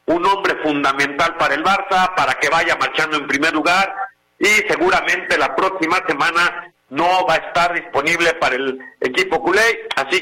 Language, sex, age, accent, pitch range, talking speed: Spanish, male, 50-69, Mexican, 155-205 Hz, 165 wpm